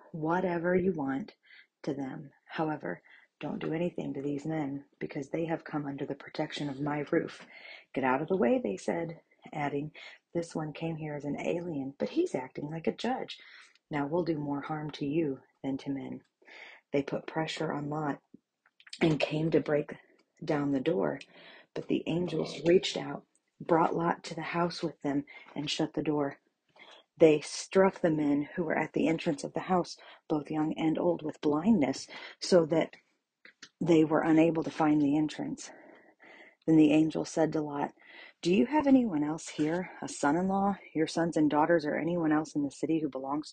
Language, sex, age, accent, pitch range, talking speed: English, female, 40-59, American, 145-170 Hz, 185 wpm